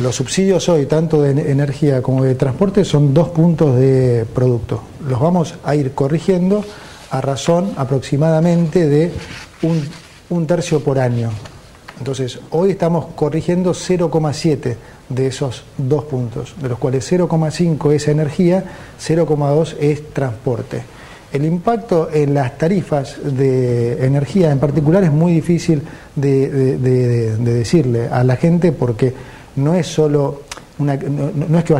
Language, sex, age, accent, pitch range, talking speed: Spanish, male, 40-59, Argentinian, 135-165 Hz, 140 wpm